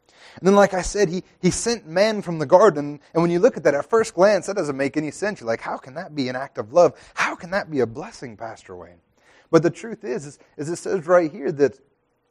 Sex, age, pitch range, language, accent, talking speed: male, 30-49, 130-170 Hz, English, American, 270 wpm